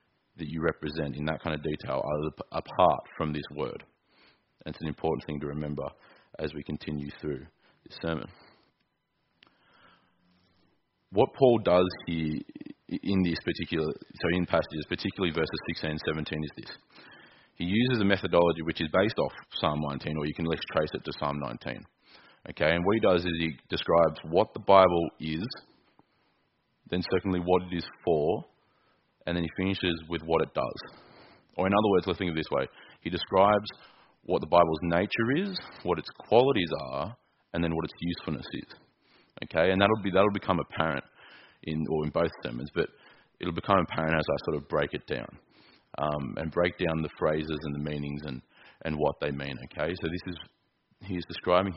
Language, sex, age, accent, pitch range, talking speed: English, male, 30-49, Australian, 75-90 Hz, 185 wpm